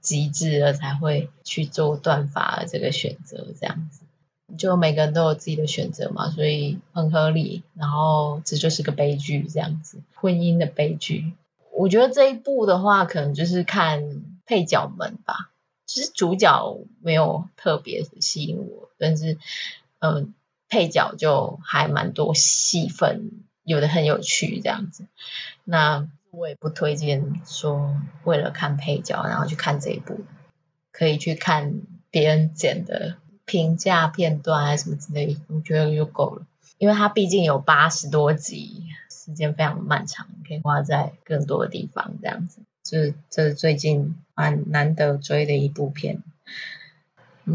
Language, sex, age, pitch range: Chinese, female, 20-39, 150-175 Hz